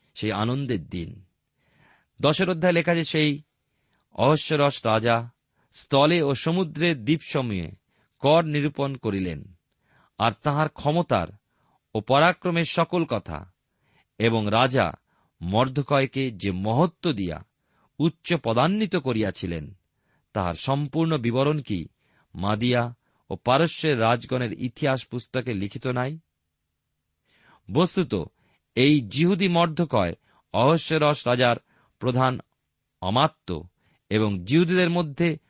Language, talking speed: Bengali, 90 wpm